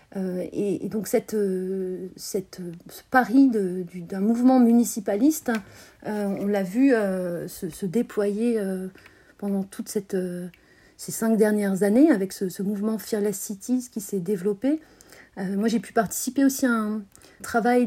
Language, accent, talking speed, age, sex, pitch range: French, French, 160 wpm, 40-59, female, 205-255 Hz